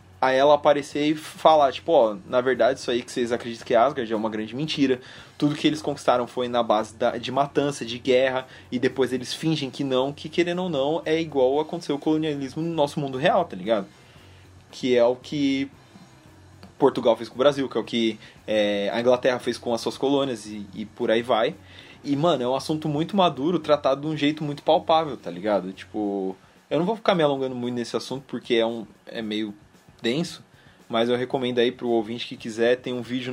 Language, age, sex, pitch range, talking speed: Portuguese, 20-39, male, 115-150 Hz, 215 wpm